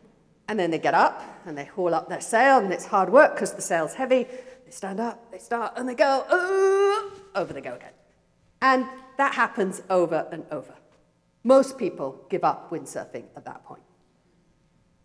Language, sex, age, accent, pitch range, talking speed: English, female, 50-69, British, 160-235 Hz, 185 wpm